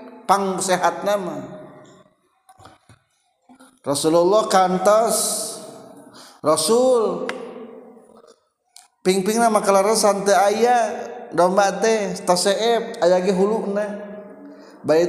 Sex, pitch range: male, 140-210 Hz